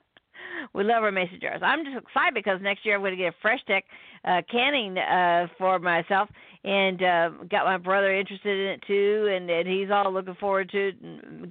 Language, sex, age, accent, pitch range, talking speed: English, female, 50-69, American, 175-195 Hz, 215 wpm